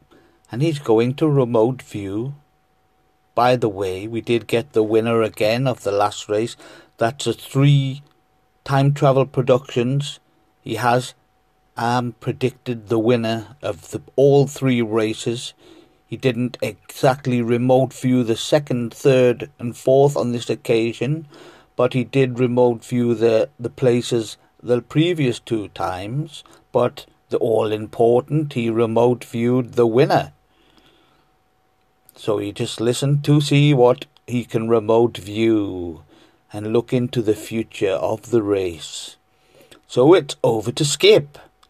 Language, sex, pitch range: English, male, 115-135 Hz